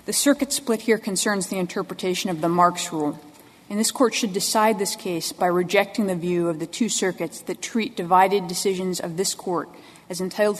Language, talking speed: English, 200 wpm